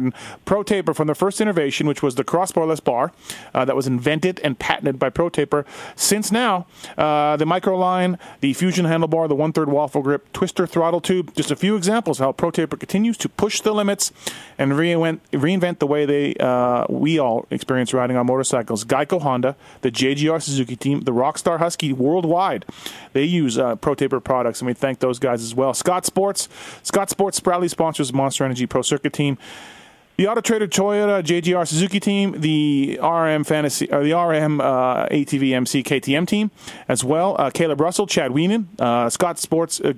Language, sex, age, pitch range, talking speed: English, male, 30-49, 135-175 Hz, 185 wpm